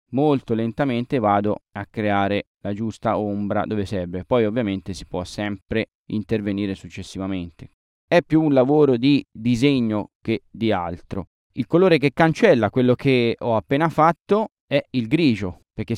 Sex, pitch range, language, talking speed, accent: male, 100-120 Hz, Italian, 145 wpm, native